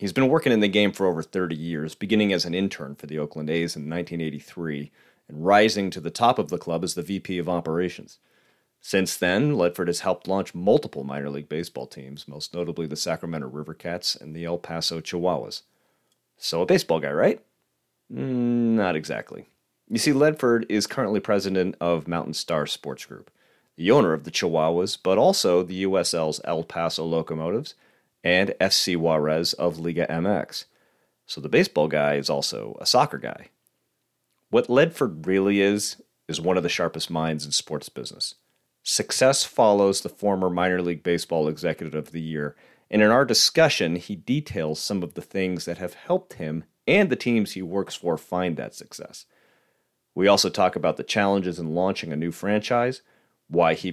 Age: 30-49